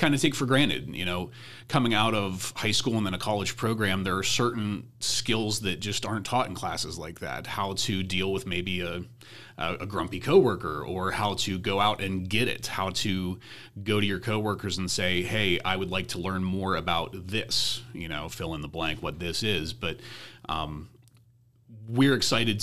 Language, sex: English, male